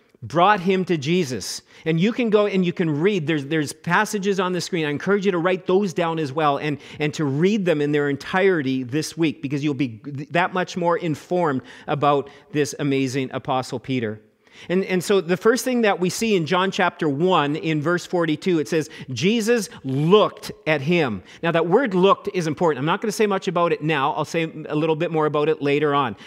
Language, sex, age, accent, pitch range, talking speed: English, male, 40-59, American, 155-205 Hz, 220 wpm